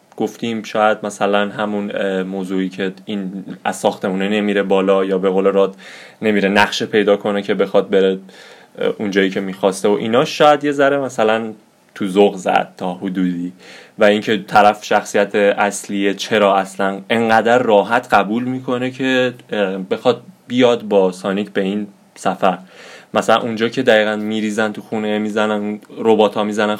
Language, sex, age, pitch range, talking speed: Persian, male, 20-39, 100-120 Hz, 150 wpm